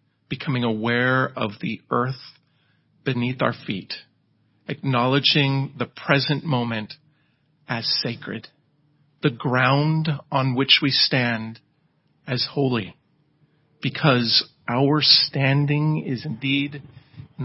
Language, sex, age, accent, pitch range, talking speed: English, male, 40-59, American, 125-175 Hz, 95 wpm